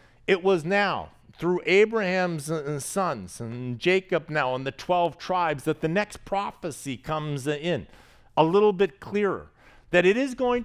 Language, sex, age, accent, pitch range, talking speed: English, male, 50-69, American, 125-190 Hz, 150 wpm